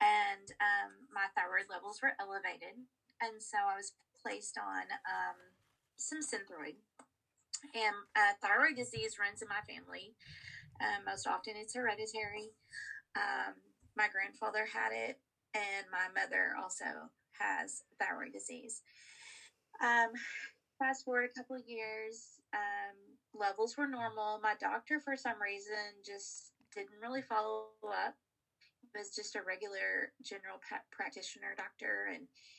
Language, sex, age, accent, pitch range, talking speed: English, female, 30-49, American, 205-255 Hz, 130 wpm